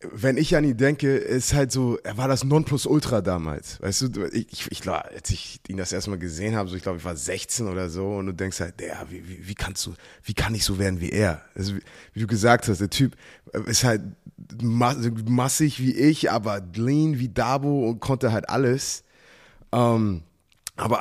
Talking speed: 210 wpm